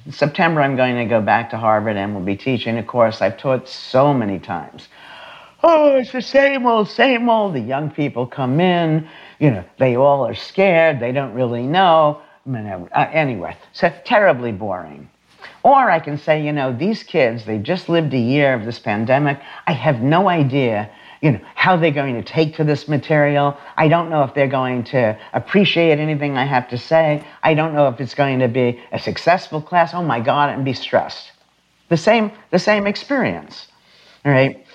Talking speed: 200 wpm